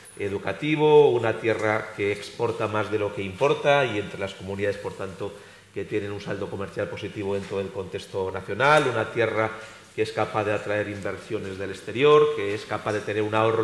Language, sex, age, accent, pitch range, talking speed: Spanish, male, 40-59, Spanish, 105-120 Hz, 190 wpm